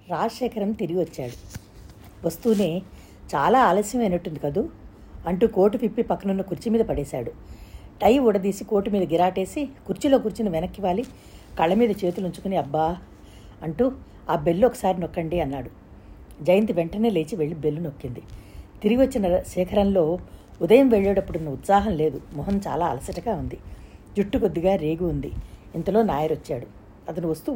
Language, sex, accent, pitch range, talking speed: Telugu, female, native, 155-210 Hz, 125 wpm